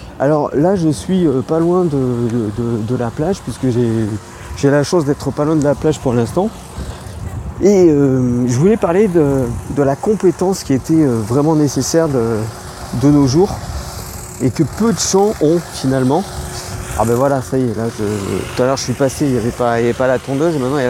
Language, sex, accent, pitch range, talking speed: French, male, French, 130-170 Hz, 220 wpm